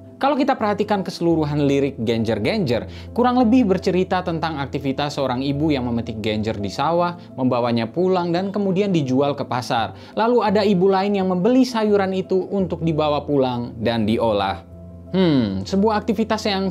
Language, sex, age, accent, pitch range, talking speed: Indonesian, male, 20-39, native, 120-190 Hz, 150 wpm